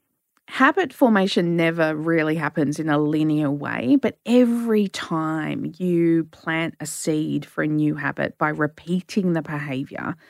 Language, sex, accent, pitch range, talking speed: English, female, Australian, 155-200 Hz, 140 wpm